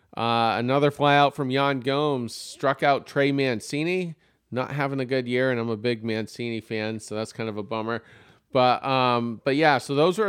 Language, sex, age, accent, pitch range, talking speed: English, male, 40-59, American, 110-140 Hz, 200 wpm